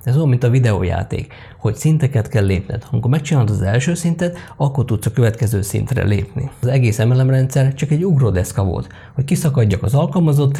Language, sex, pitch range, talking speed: Hungarian, male, 115-140 Hz, 180 wpm